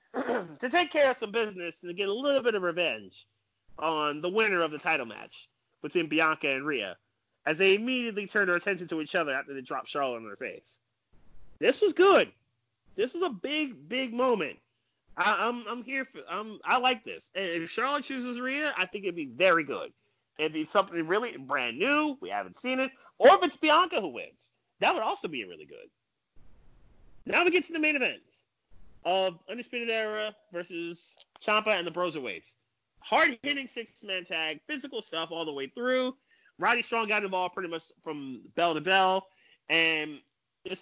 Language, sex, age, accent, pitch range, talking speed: English, male, 30-49, American, 165-260 Hz, 195 wpm